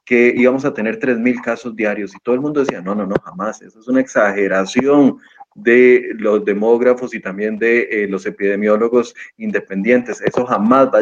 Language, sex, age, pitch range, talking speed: Spanish, male, 30-49, 105-125 Hz, 190 wpm